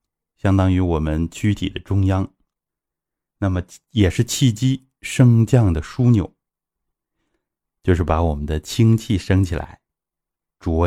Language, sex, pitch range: Chinese, male, 80-105 Hz